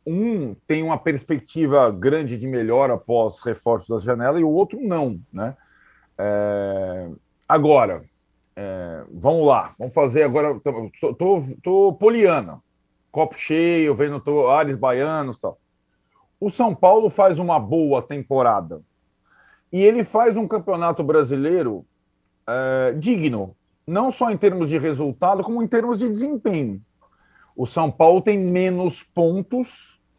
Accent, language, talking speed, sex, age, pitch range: Brazilian, Portuguese, 135 wpm, male, 40-59, 130-195 Hz